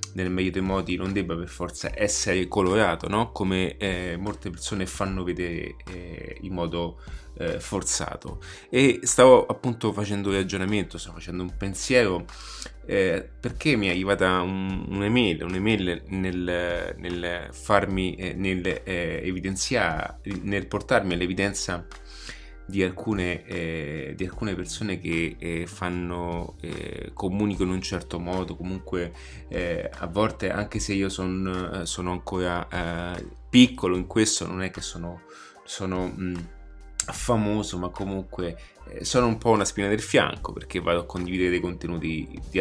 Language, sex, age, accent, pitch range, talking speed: Italian, male, 20-39, native, 85-95 Hz, 140 wpm